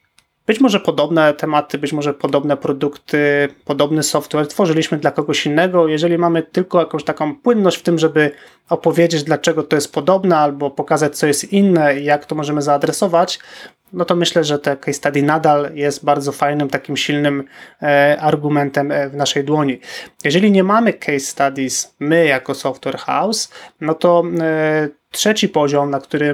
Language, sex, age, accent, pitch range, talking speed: Polish, male, 20-39, native, 145-160 Hz, 160 wpm